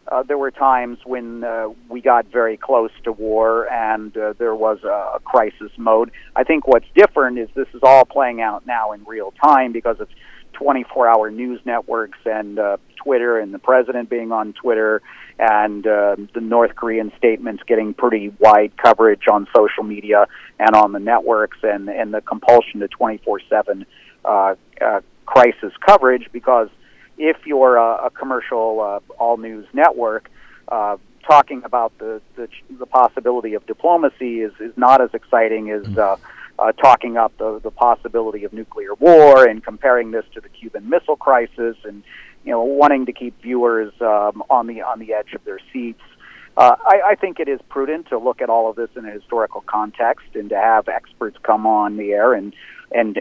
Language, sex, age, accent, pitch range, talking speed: English, male, 50-69, American, 110-125 Hz, 180 wpm